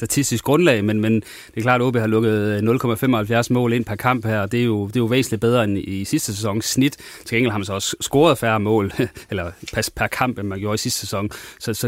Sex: male